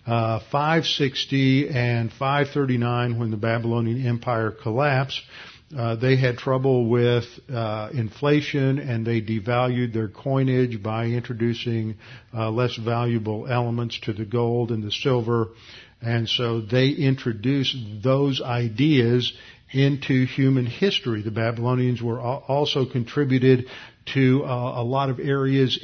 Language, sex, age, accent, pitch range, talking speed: English, male, 50-69, American, 115-130 Hz, 125 wpm